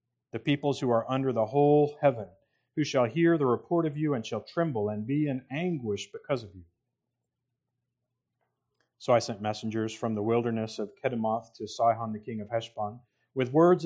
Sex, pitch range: male, 115-140 Hz